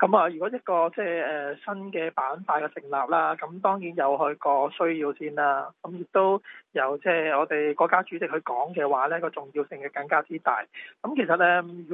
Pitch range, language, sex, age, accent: 150-180 Hz, Chinese, male, 20-39, native